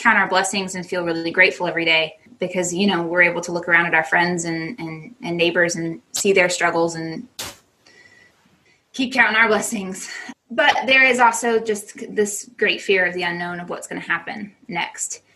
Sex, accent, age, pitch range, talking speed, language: female, American, 20-39, 170-210 Hz, 195 wpm, English